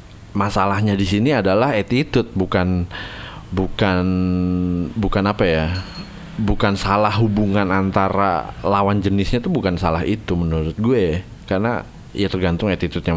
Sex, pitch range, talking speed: male, 90-105 Hz, 120 wpm